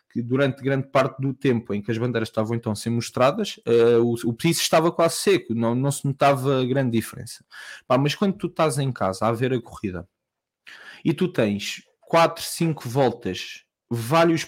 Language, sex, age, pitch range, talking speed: English, male, 20-39, 115-160 Hz, 180 wpm